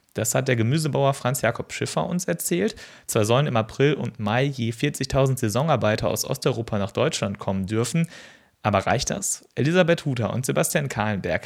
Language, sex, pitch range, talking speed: German, male, 110-140 Hz, 170 wpm